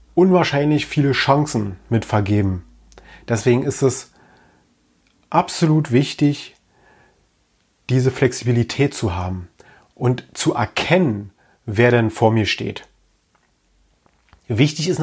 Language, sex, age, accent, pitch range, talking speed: German, male, 30-49, German, 115-150 Hz, 95 wpm